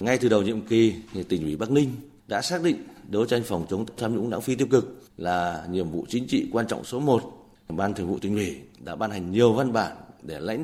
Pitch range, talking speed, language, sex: 100-135 Hz, 255 wpm, Vietnamese, male